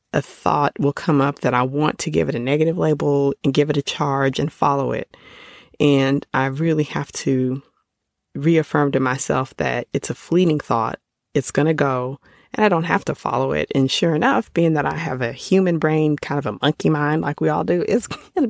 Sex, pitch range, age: female, 135-160 Hz, 30-49